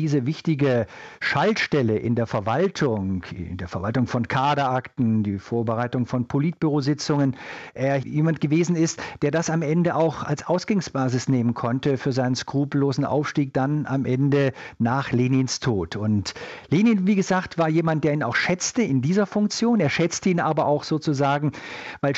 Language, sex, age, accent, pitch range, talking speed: German, male, 50-69, German, 120-155 Hz, 155 wpm